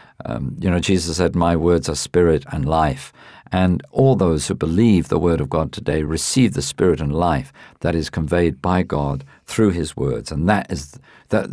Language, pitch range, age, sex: English, 75-95 Hz, 50-69, male